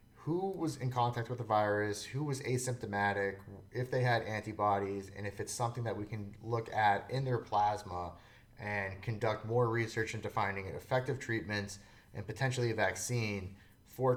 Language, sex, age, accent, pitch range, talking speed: English, male, 30-49, American, 105-120 Hz, 170 wpm